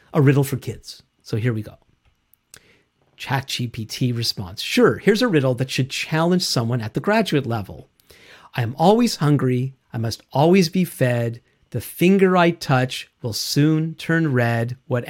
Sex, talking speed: male, 160 wpm